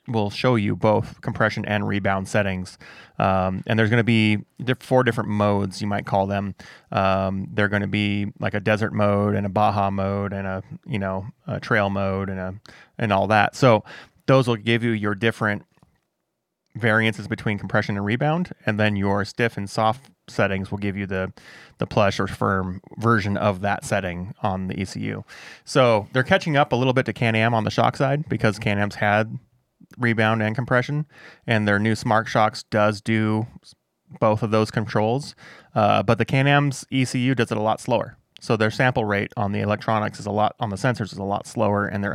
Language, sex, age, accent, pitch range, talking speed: English, male, 20-39, American, 100-120 Hz, 200 wpm